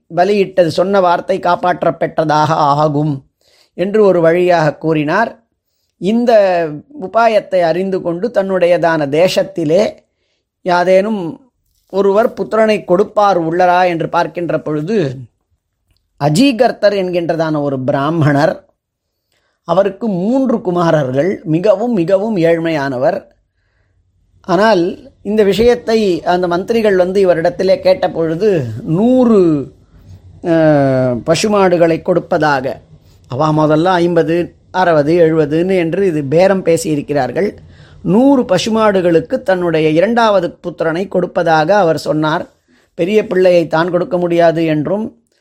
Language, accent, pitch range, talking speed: Tamil, native, 155-195 Hz, 90 wpm